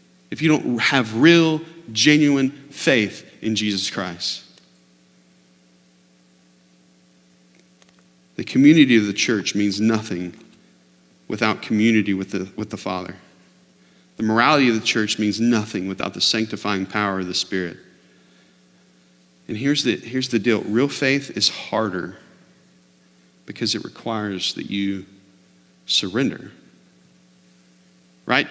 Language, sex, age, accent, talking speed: English, male, 40-59, American, 110 wpm